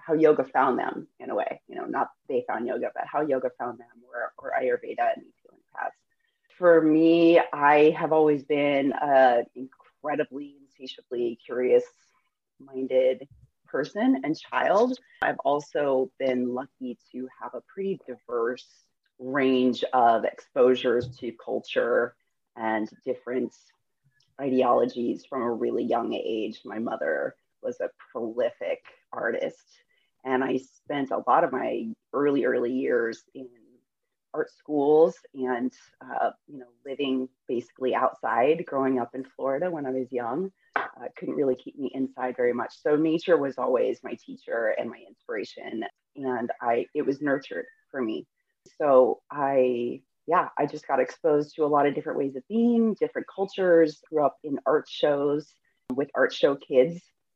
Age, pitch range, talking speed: 30-49, 130-195 Hz, 150 wpm